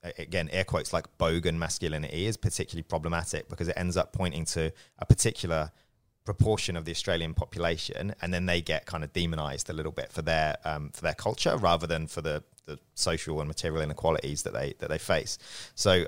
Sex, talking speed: male, 200 wpm